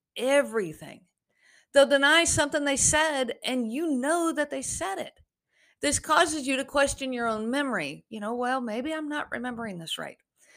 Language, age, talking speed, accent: English, 50-69, 170 wpm, American